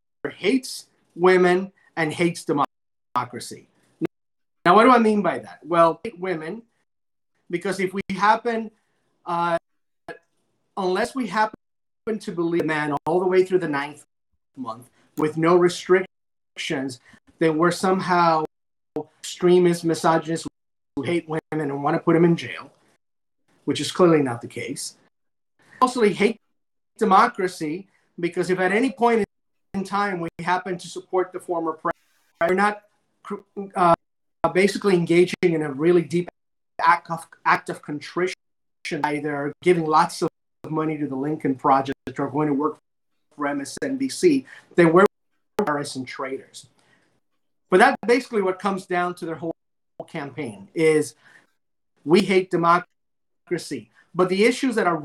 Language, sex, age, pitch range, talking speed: English, male, 30-49, 155-190 Hz, 140 wpm